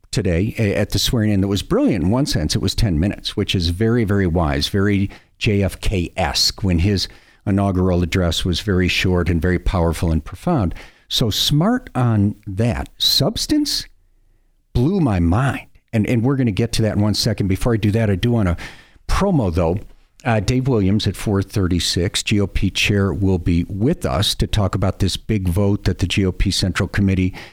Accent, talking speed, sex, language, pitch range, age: American, 185 wpm, male, English, 90-105 Hz, 50-69